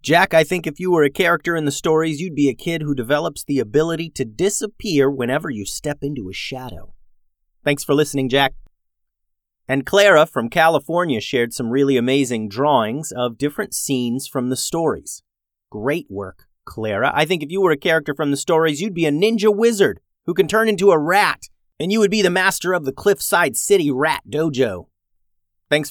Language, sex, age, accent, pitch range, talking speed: English, male, 30-49, American, 125-180 Hz, 190 wpm